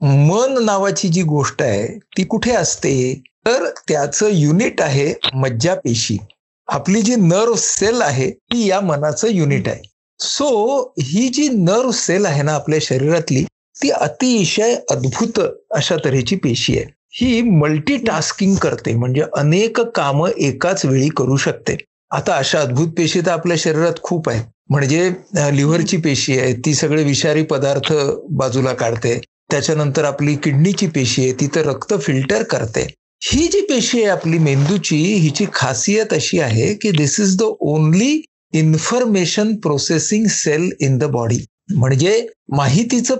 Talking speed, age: 145 wpm, 60-79